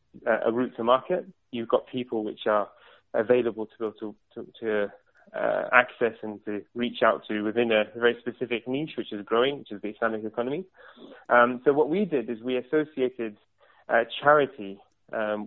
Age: 20-39